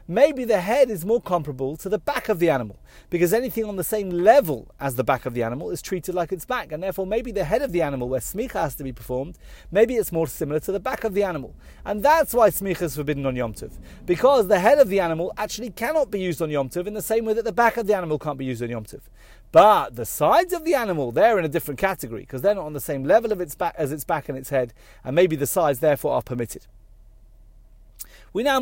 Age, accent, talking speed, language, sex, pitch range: 30-49, British, 265 wpm, English, male, 140-210 Hz